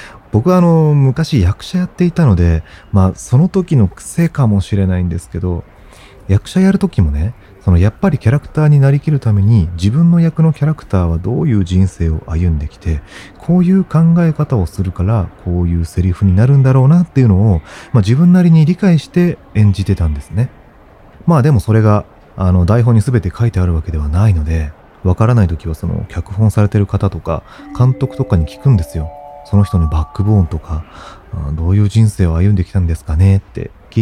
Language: Japanese